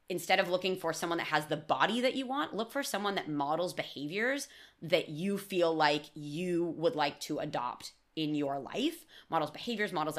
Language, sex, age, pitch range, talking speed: English, female, 20-39, 160-235 Hz, 195 wpm